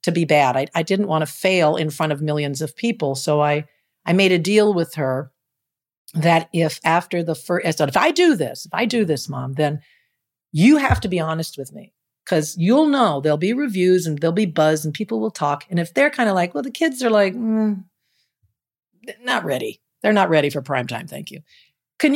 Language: English